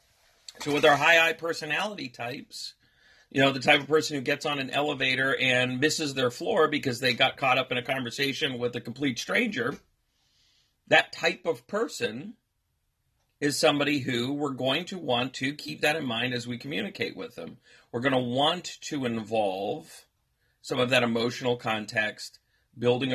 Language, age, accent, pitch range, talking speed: English, 40-59, American, 120-150 Hz, 175 wpm